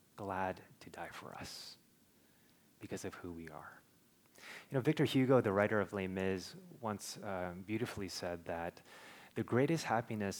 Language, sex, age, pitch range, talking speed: English, male, 30-49, 95-115 Hz, 155 wpm